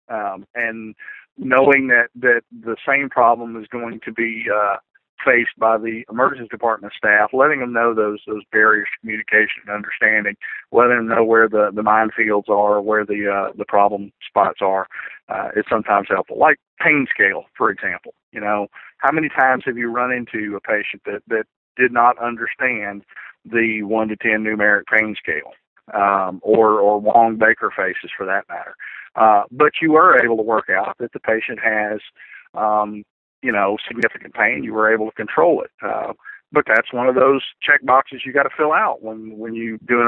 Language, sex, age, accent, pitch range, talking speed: English, male, 40-59, American, 105-125 Hz, 185 wpm